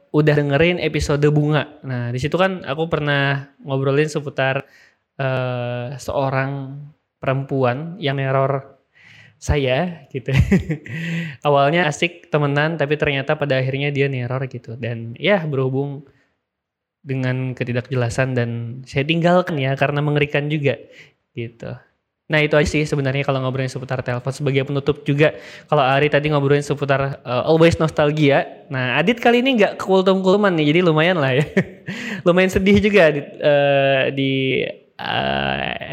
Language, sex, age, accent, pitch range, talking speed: Indonesian, male, 20-39, native, 135-165 Hz, 130 wpm